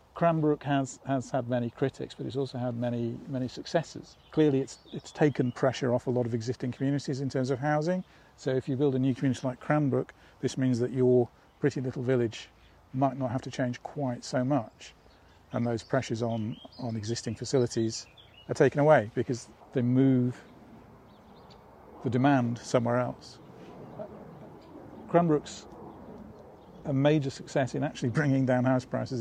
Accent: British